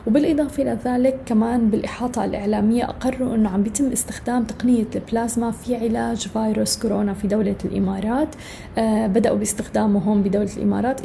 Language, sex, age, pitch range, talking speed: Arabic, female, 20-39, 210-240 Hz, 135 wpm